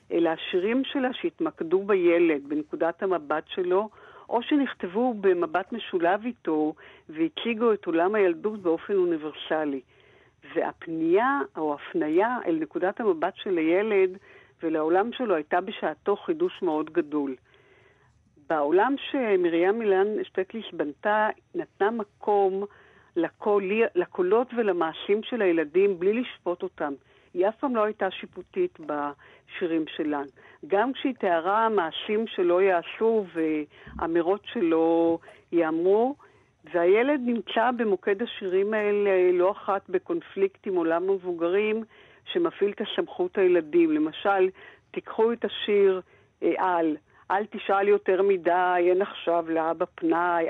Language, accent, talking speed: Hebrew, native, 115 wpm